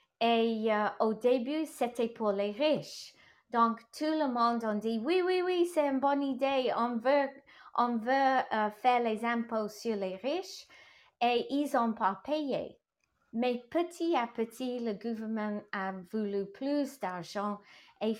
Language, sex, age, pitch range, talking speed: English, female, 30-49, 205-265 Hz, 165 wpm